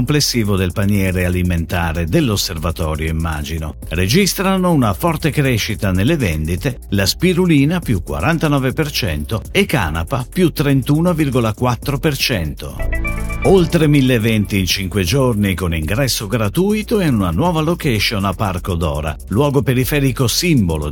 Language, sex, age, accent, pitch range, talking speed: Italian, male, 50-69, native, 95-145 Hz, 105 wpm